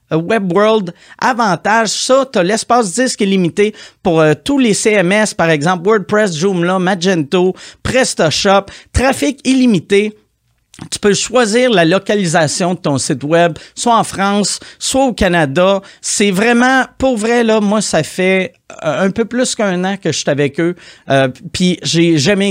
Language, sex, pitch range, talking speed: French, male, 165-220 Hz, 155 wpm